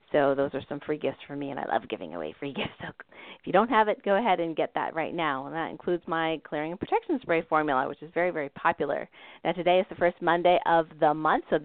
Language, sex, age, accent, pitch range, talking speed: English, female, 30-49, American, 160-205 Hz, 270 wpm